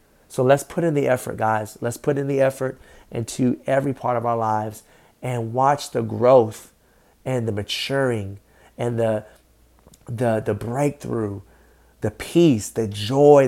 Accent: American